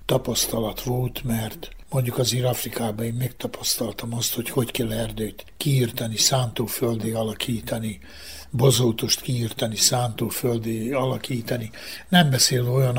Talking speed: 105 wpm